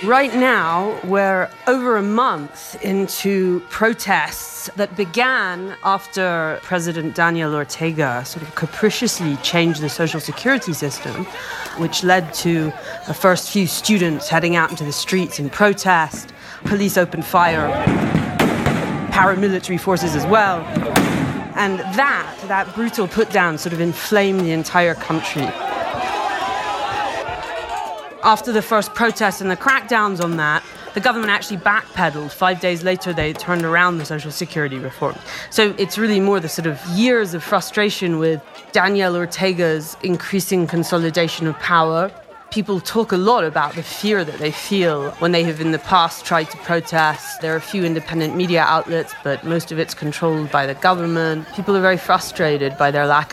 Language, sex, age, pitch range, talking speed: English, female, 30-49, 160-200 Hz, 150 wpm